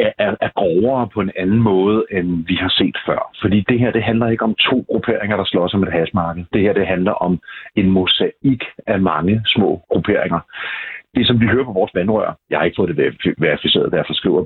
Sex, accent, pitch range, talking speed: male, native, 90-110 Hz, 220 wpm